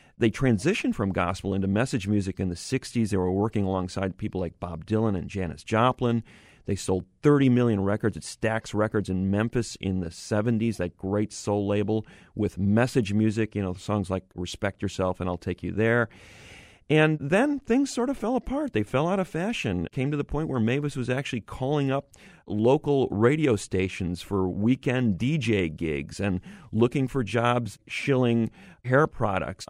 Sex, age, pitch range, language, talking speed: male, 40-59, 95-125 Hz, English, 180 wpm